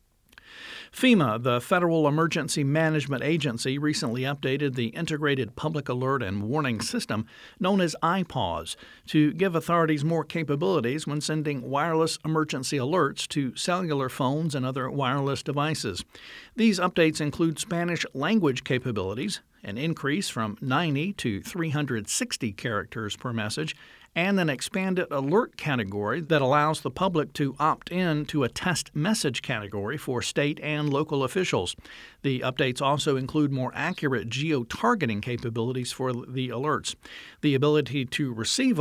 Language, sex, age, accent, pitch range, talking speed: English, male, 50-69, American, 125-165 Hz, 135 wpm